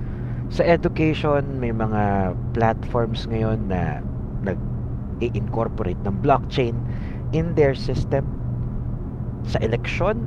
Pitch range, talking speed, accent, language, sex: 110-125 Hz, 95 wpm, native, Filipino, male